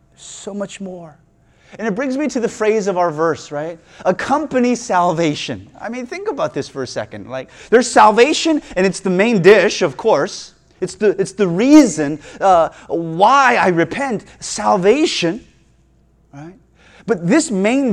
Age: 30-49